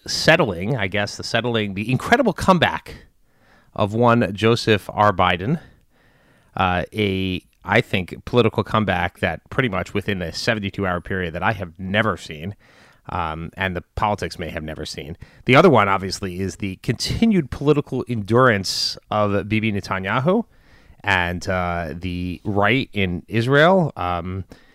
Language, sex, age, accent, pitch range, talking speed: English, male, 30-49, American, 90-110 Hz, 145 wpm